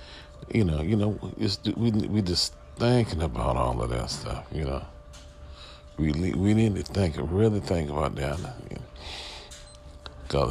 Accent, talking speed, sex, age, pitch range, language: American, 155 wpm, male, 40-59, 70-90 Hz, English